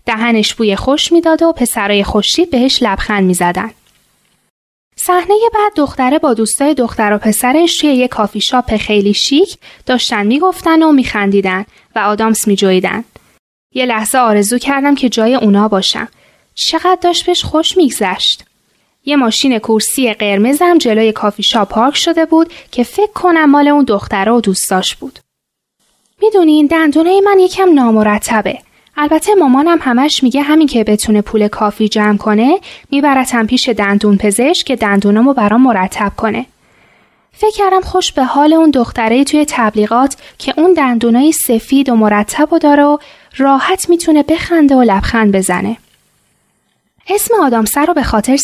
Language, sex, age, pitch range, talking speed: Persian, female, 10-29, 215-310 Hz, 150 wpm